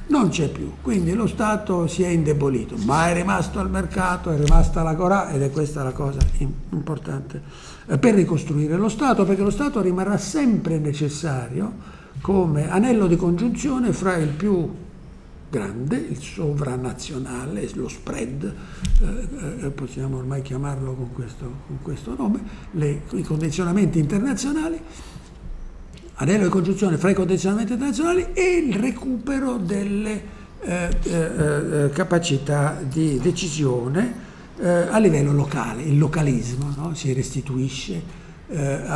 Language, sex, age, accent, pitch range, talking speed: Italian, male, 60-79, native, 140-200 Hz, 130 wpm